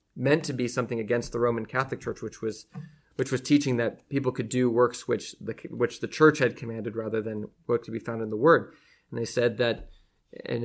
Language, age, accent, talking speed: English, 30-49, American, 225 wpm